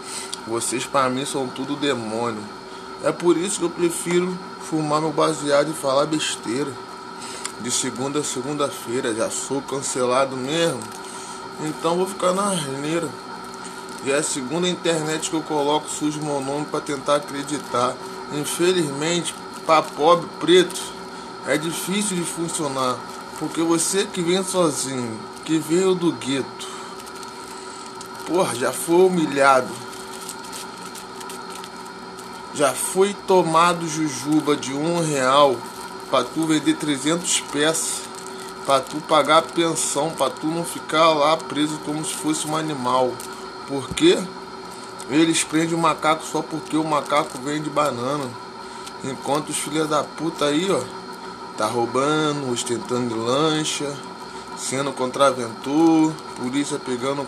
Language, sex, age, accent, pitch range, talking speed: English, male, 20-39, Brazilian, 140-175 Hz, 125 wpm